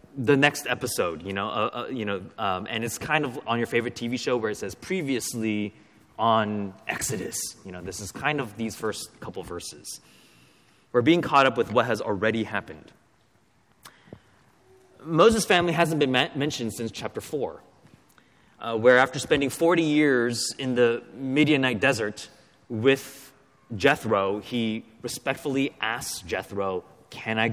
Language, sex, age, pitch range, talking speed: English, male, 20-39, 105-135 Hz, 155 wpm